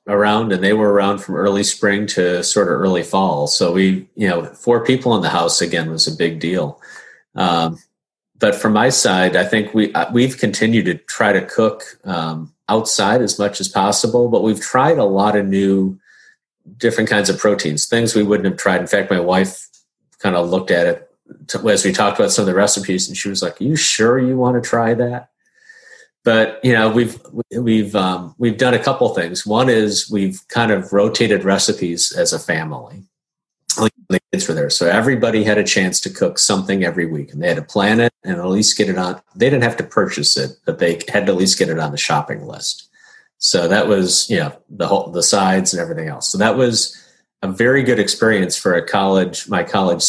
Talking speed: 220 wpm